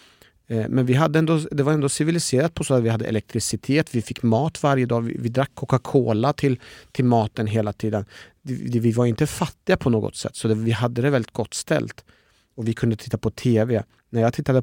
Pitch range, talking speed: 115-135 Hz, 205 wpm